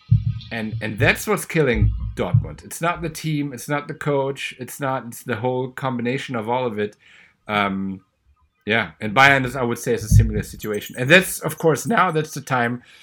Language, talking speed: English, 205 wpm